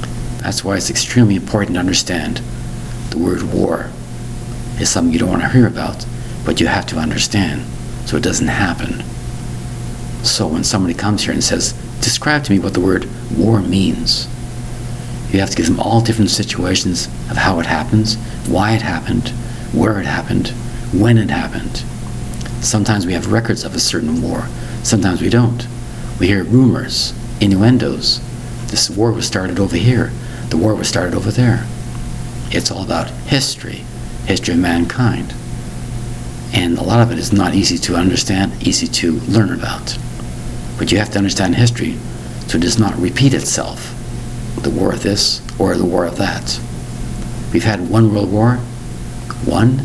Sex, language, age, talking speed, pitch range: male, English, 60-79, 165 wpm, 95-120 Hz